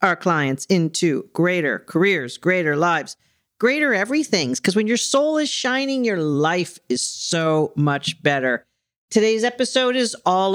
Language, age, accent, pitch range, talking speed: English, 40-59, American, 145-240 Hz, 140 wpm